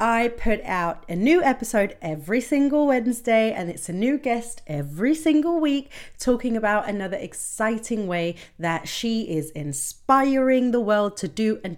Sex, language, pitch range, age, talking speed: female, English, 175-250 Hz, 30-49, 160 wpm